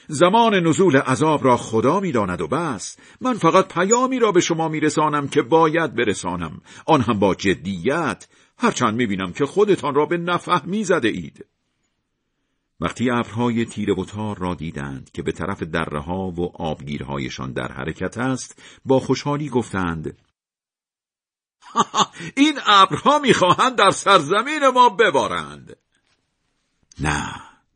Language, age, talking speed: Persian, 50-69, 125 wpm